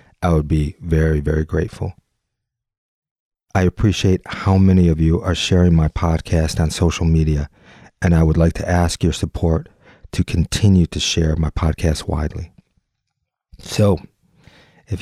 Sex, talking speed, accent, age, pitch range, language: male, 145 wpm, American, 40-59, 80-95 Hz, English